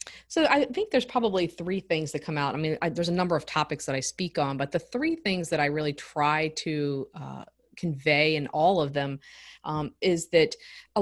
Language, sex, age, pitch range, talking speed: English, female, 20-39, 150-205 Hz, 225 wpm